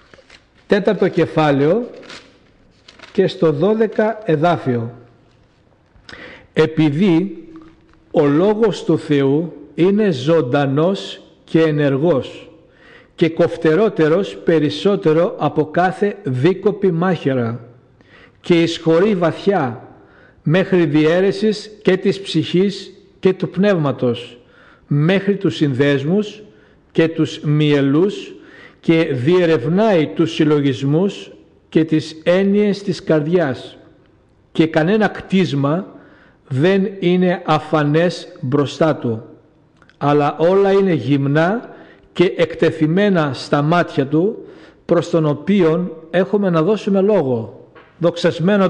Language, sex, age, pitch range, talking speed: Greek, male, 60-79, 150-190 Hz, 90 wpm